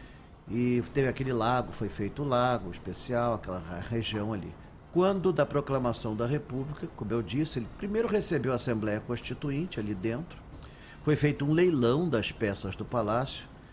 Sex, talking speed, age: male, 155 wpm, 50-69